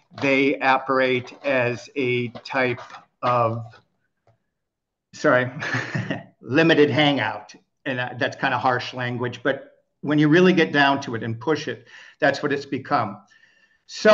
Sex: male